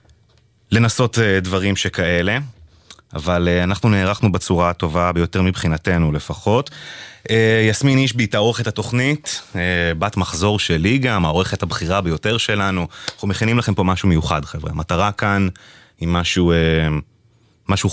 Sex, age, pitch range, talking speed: male, 30-49, 85-110 Hz, 120 wpm